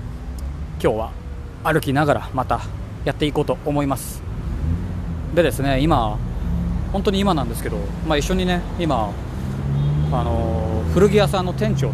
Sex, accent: male, native